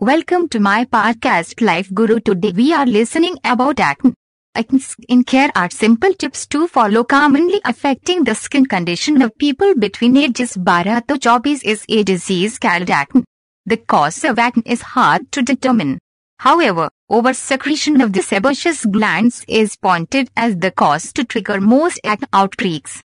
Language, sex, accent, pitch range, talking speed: Hindi, female, native, 215-285 Hz, 165 wpm